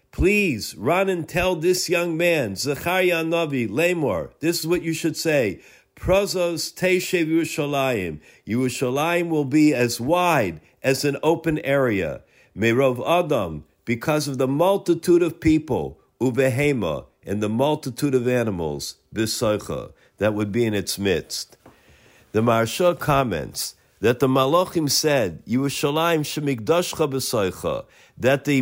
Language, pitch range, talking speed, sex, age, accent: English, 130-170 Hz, 125 wpm, male, 50-69, American